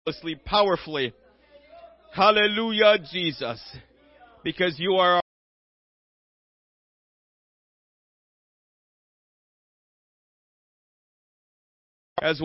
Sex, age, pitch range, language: male, 40-59, 145-200 Hz, English